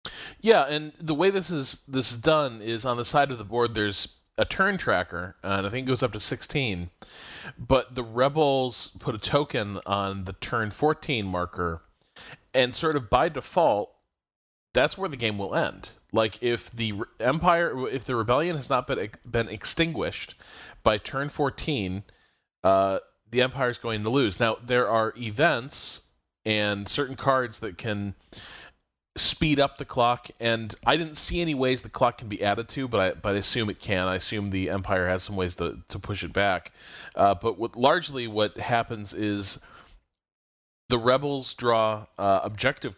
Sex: male